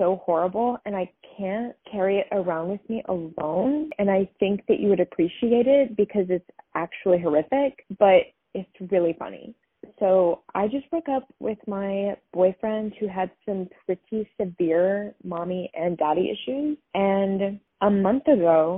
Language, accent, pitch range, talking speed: English, American, 190-235 Hz, 150 wpm